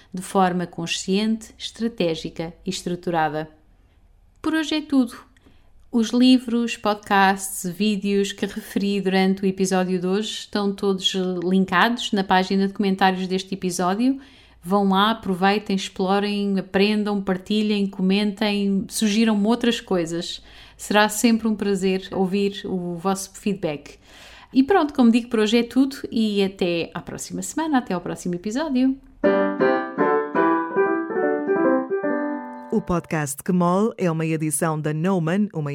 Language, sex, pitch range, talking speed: Portuguese, female, 165-215 Hz, 125 wpm